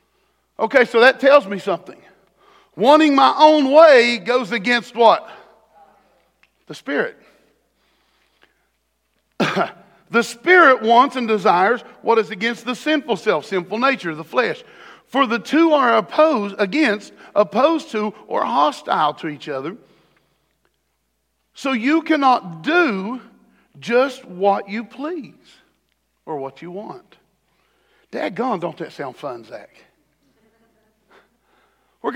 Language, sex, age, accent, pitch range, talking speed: English, male, 50-69, American, 200-270 Hz, 115 wpm